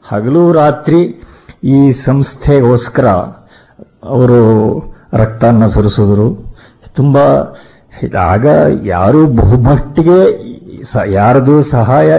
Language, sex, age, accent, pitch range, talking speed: Kannada, male, 50-69, native, 115-145 Hz, 65 wpm